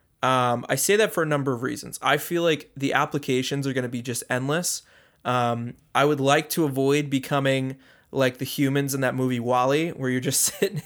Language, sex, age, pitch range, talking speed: English, male, 20-39, 130-150 Hz, 210 wpm